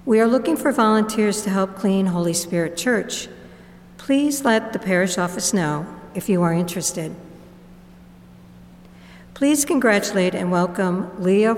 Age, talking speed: 60-79, 135 wpm